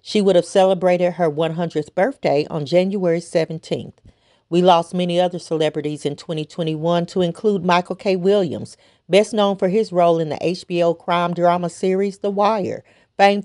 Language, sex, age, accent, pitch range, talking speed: English, female, 40-59, American, 165-195 Hz, 160 wpm